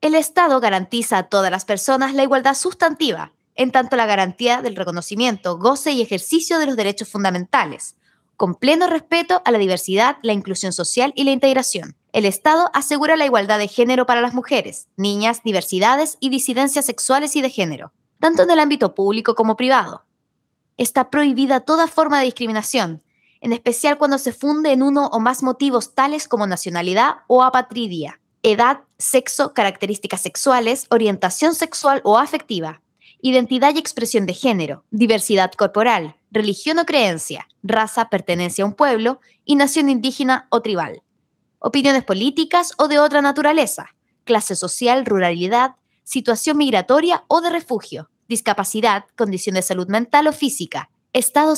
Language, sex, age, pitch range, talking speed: Spanish, female, 20-39, 205-285 Hz, 150 wpm